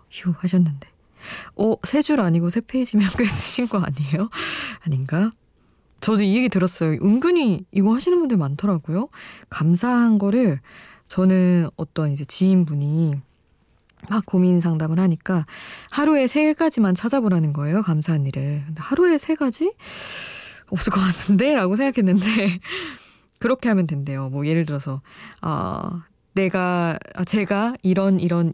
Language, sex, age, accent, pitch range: Korean, female, 20-39, native, 160-215 Hz